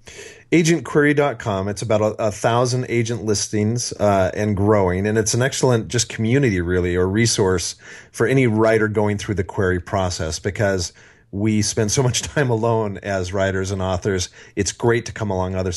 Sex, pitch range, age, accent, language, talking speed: male, 95-120 Hz, 40-59, American, English, 170 wpm